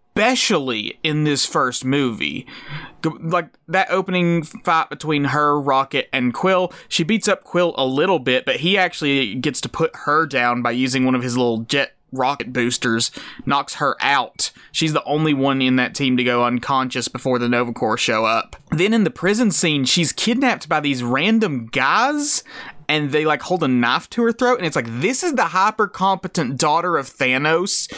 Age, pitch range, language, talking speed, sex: 20-39, 135-190 Hz, English, 185 wpm, male